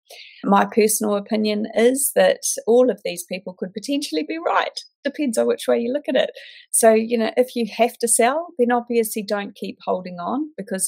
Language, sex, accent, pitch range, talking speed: English, female, Australian, 170-240 Hz, 200 wpm